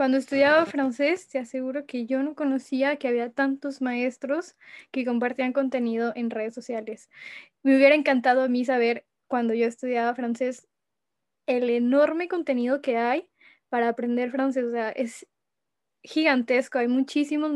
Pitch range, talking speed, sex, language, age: 240-275 Hz, 145 wpm, female, French, 10-29